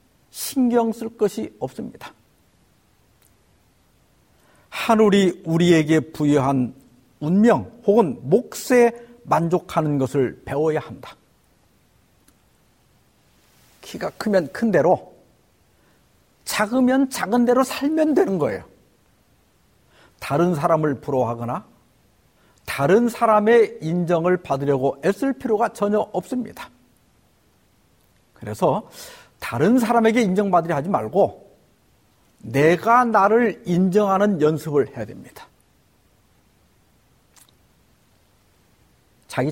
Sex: male